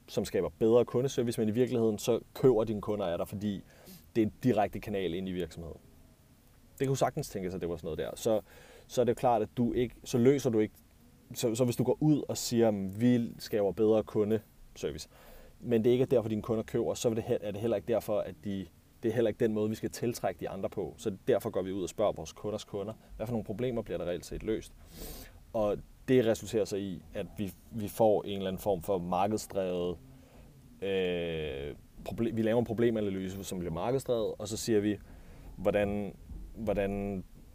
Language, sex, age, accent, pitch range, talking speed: Danish, male, 30-49, native, 95-115 Hz, 215 wpm